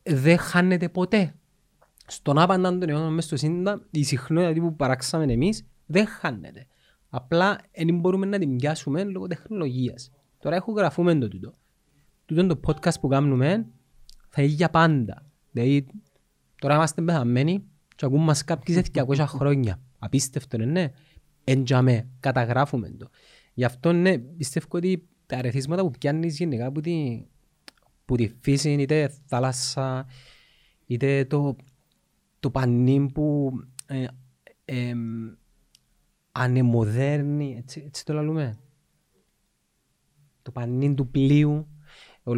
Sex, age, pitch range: male, 30-49, 125-160 Hz